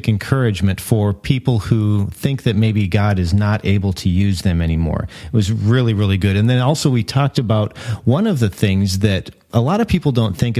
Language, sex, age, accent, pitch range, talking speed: English, male, 40-59, American, 100-120 Hz, 210 wpm